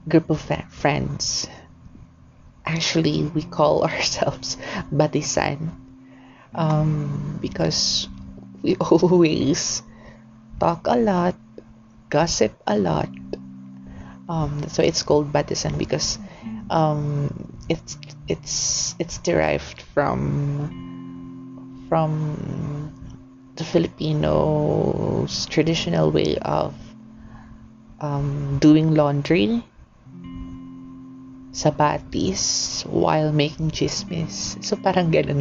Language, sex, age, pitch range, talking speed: Filipino, female, 30-49, 120-165 Hz, 85 wpm